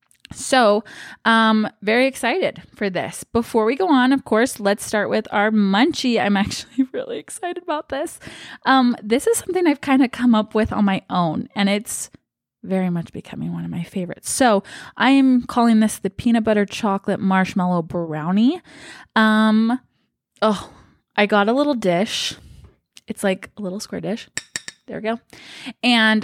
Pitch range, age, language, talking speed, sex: 195-250 Hz, 20-39, English, 165 wpm, female